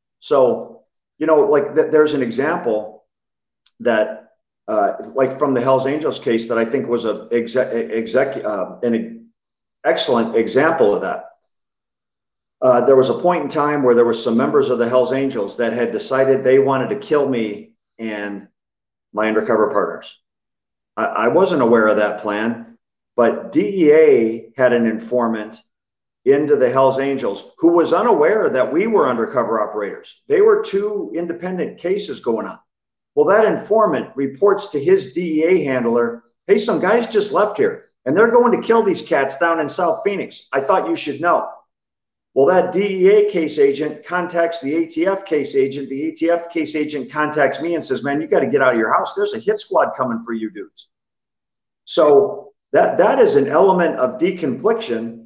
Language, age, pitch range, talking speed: English, 50-69, 125-210 Hz, 170 wpm